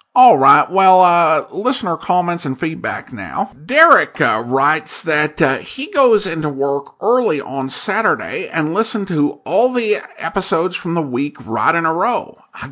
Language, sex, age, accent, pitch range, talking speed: English, male, 50-69, American, 140-200 Hz, 165 wpm